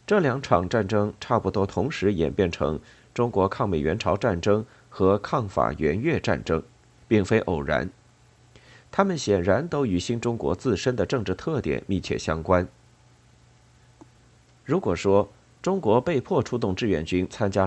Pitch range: 90-120 Hz